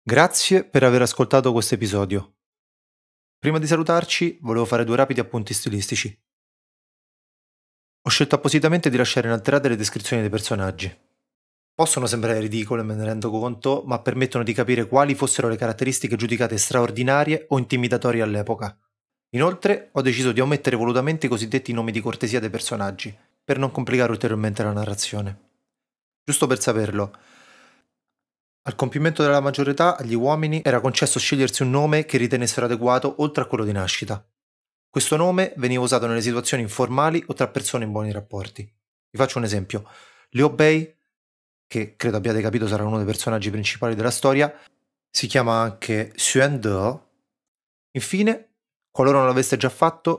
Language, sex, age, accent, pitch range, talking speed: Italian, male, 30-49, native, 115-140 Hz, 150 wpm